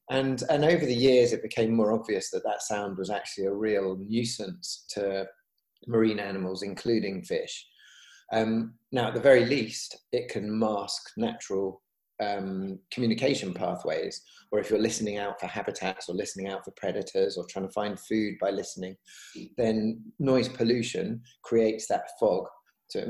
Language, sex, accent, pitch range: English, male, British, 100-120 Hz